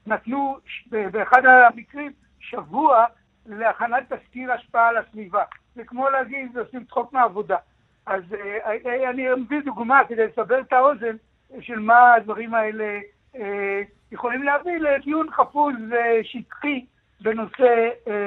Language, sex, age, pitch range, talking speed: English, male, 60-79, 215-250 Hz, 120 wpm